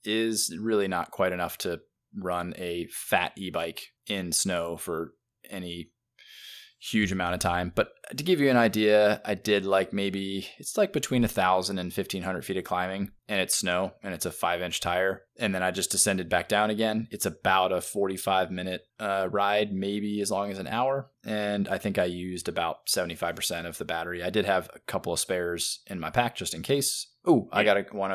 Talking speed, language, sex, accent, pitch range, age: 210 wpm, English, male, American, 90-110 Hz, 20-39